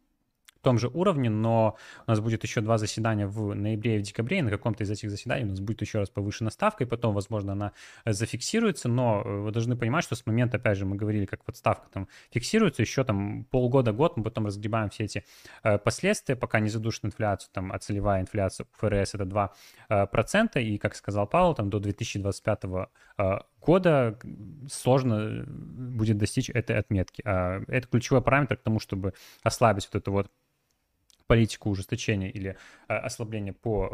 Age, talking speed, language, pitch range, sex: 20-39, 170 wpm, Russian, 100-120 Hz, male